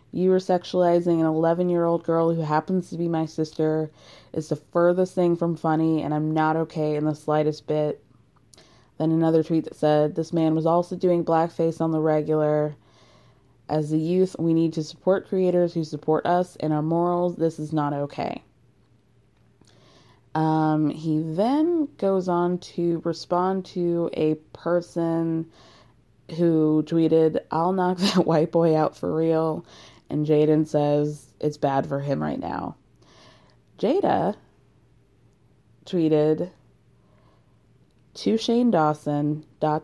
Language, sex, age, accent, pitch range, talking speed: English, female, 20-39, American, 145-175 Hz, 140 wpm